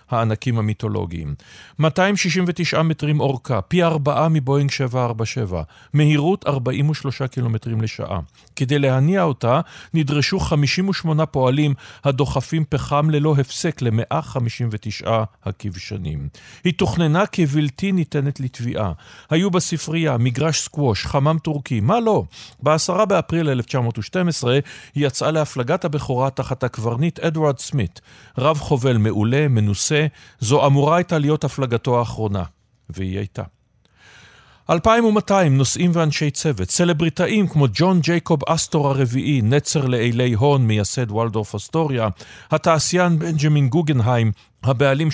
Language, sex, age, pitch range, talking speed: Hebrew, male, 50-69, 115-160 Hz, 110 wpm